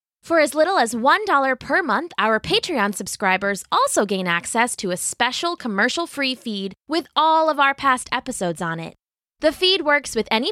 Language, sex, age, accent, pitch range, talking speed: English, female, 20-39, American, 200-285 Hz, 175 wpm